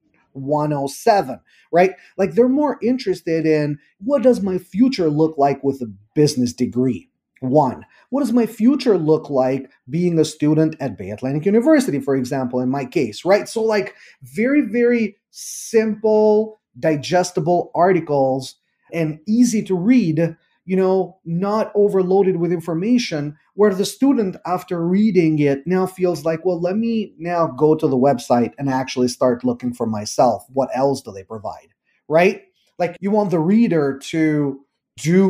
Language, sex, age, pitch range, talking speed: English, male, 30-49, 140-190 Hz, 155 wpm